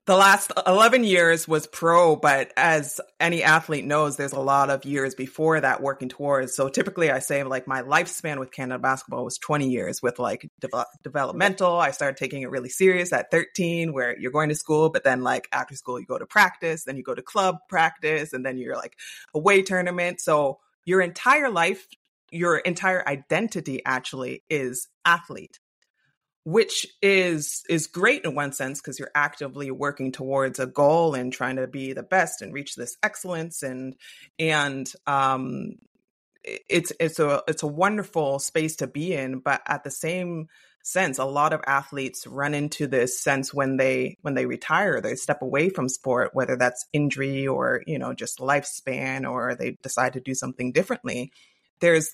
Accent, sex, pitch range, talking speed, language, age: American, female, 135-170 Hz, 180 wpm, English, 30-49